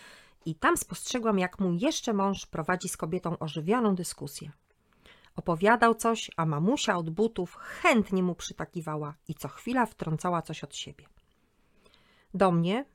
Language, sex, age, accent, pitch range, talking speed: Polish, female, 40-59, native, 170-220 Hz, 140 wpm